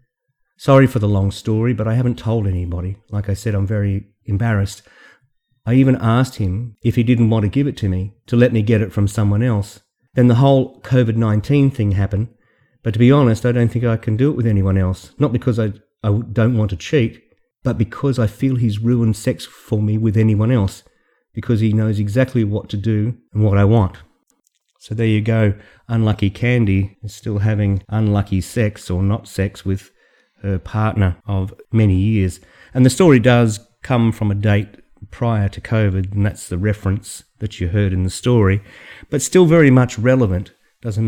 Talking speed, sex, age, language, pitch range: 195 wpm, male, 40-59, English, 100-120 Hz